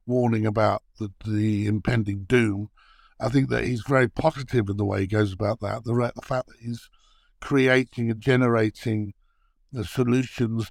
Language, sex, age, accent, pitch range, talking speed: English, male, 60-79, British, 115-135 Hz, 165 wpm